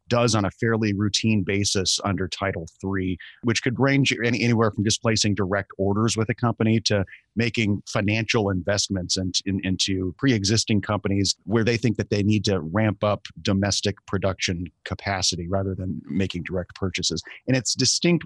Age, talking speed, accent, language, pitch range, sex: 30-49, 155 wpm, American, English, 95-110 Hz, male